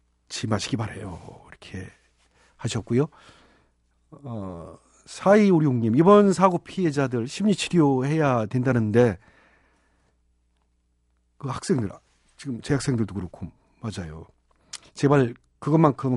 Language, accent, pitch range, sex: Korean, native, 90-145 Hz, male